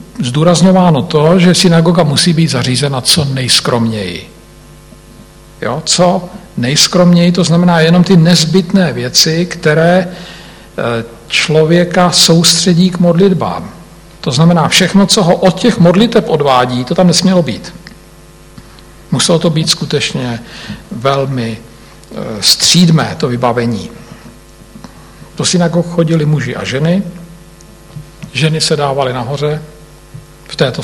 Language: Slovak